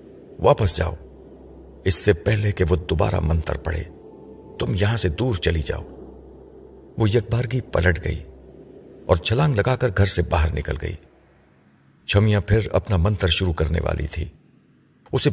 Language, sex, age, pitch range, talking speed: Urdu, male, 50-69, 80-100 Hz, 155 wpm